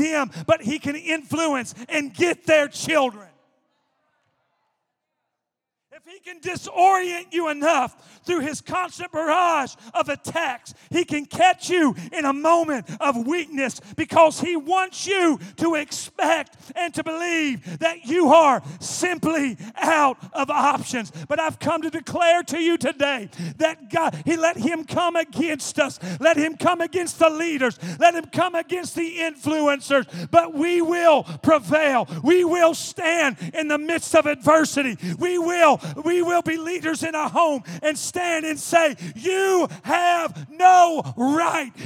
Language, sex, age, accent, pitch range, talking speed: English, male, 40-59, American, 260-335 Hz, 145 wpm